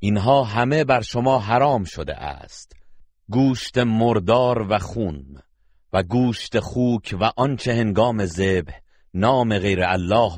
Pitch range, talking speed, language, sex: 90-115 Hz, 120 wpm, Persian, male